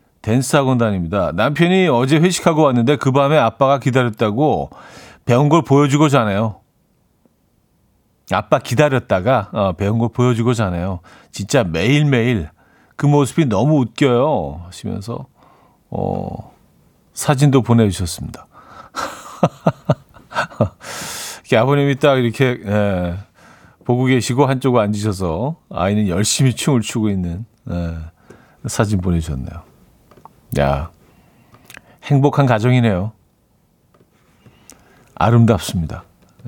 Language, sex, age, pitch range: Korean, male, 40-59, 105-145 Hz